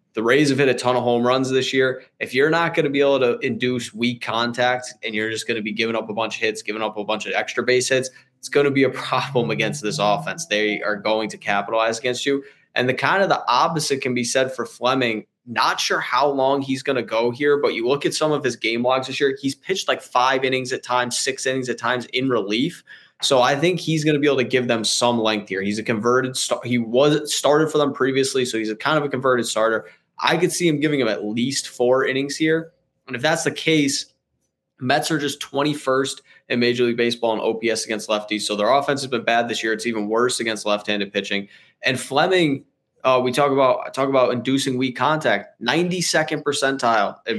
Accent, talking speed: American, 240 wpm